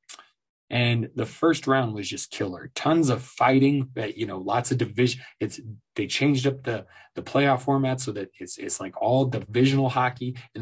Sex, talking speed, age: male, 180 wpm, 20-39